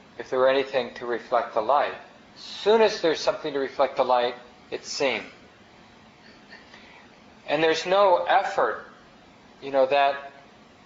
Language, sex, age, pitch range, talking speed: English, male, 40-59, 120-140 Hz, 145 wpm